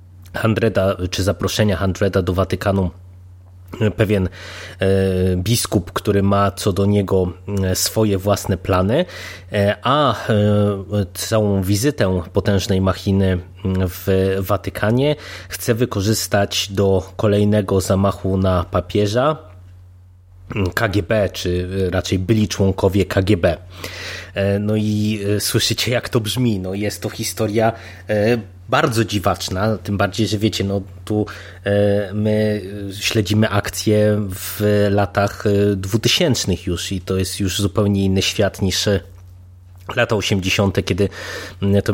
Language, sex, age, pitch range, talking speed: Polish, male, 20-39, 95-105 Hz, 100 wpm